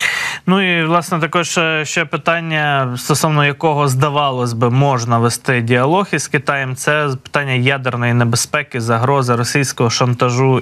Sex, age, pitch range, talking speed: male, 20-39, 120-150 Hz, 125 wpm